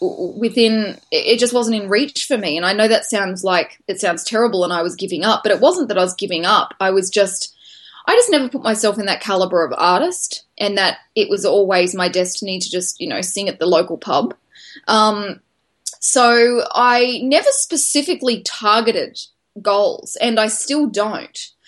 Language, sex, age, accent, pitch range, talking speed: English, female, 10-29, Australian, 190-245 Hz, 195 wpm